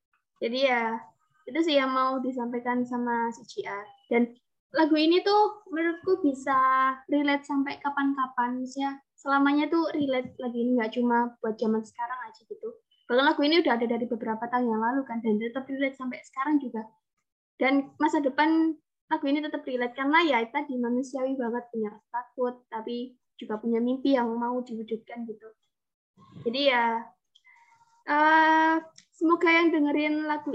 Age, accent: 20-39, native